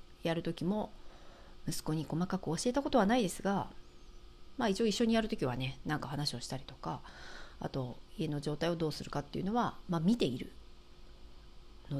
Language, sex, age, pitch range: Japanese, female, 40-59, 145-200 Hz